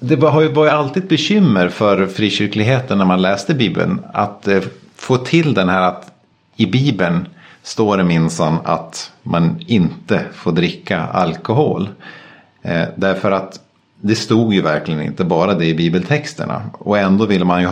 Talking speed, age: 150 wpm, 50-69